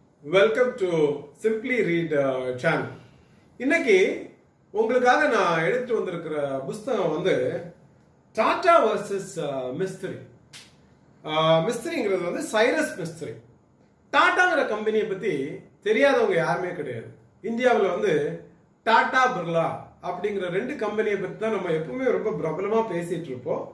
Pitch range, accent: 170-255 Hz, native